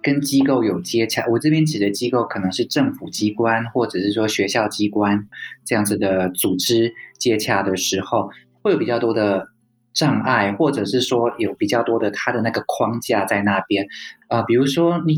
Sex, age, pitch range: male, 20-39, 105-125 Hz